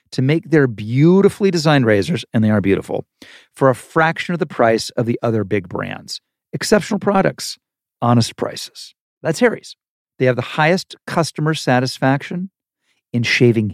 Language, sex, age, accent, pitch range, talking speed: English, male, 50-69, American, 120-160 Hz, 155 wpm